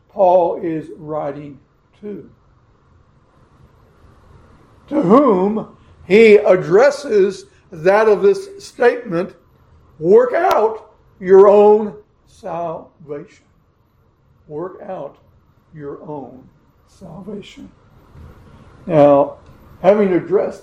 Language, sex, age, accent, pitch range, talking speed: English, male, 60-79, American, 165-210 Hz, 75 wpm